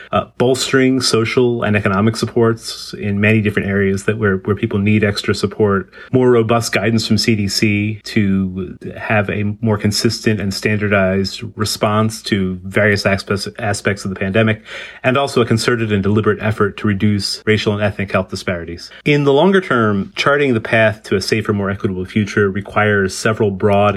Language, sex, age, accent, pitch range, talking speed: English, male, 30-49, American, 100-115 Hz, 165 wpm